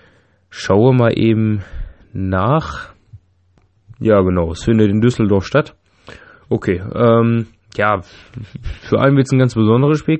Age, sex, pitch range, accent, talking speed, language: 20-39, male, 95-120 Hz, German, 130 wpm, German